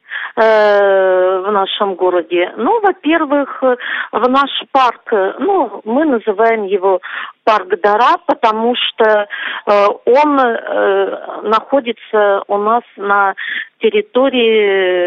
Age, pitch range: 40-59, 195-265 Hz